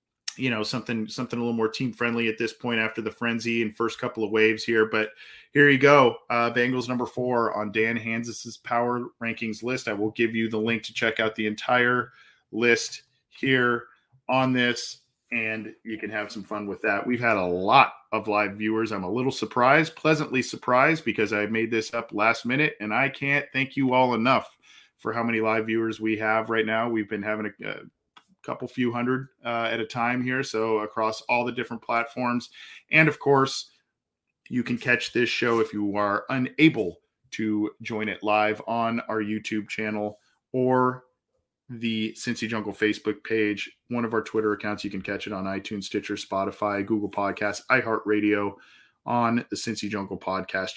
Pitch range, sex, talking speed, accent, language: 110-120 Hz, male, 190 wpm, American, English